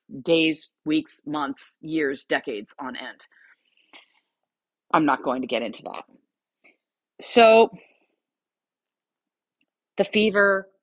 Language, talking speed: English, 95 wpm